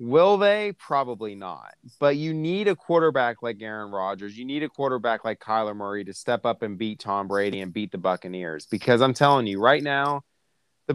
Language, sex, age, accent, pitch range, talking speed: English, male, 30-49, American, 105-130 Hz, 205 wpm